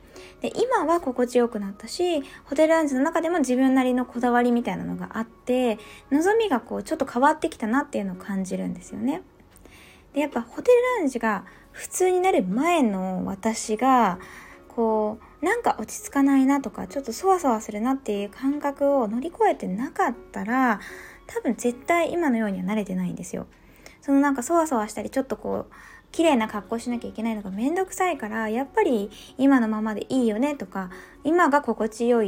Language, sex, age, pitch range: Japanese, female, 20-39, 220-290 Hz